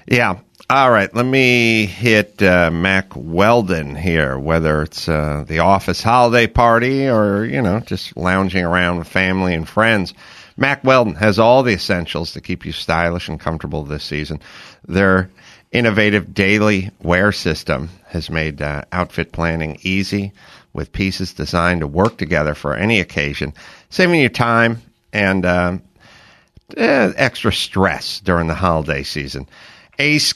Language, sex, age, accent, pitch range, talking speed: English, male, 50-69, American, 80-110 Hz, 145 wpm